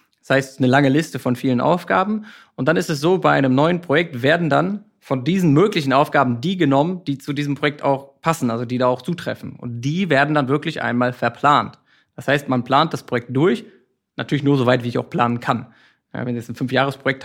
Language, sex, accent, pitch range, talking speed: German, male, German, 125-155 Hz, 225 wpm